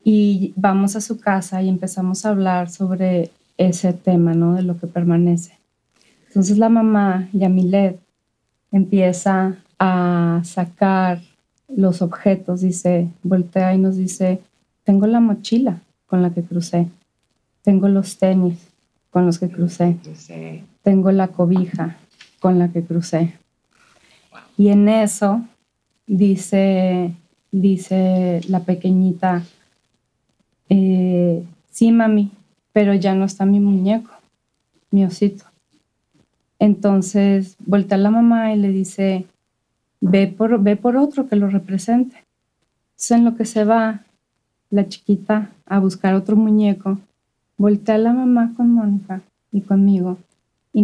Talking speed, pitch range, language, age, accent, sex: 125 wpm, 180-205 Hz, Spanish, 20-39, Mexican, female